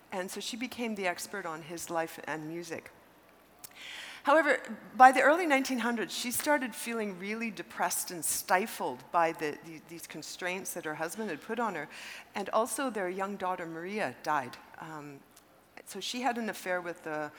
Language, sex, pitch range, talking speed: English, female, 160-205 Hz, 175 wpm